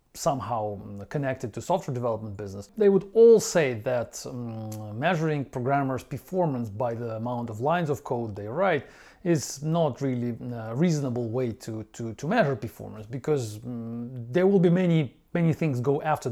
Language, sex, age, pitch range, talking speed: English, male, 40-59, 120-160 Hz, 165 wpm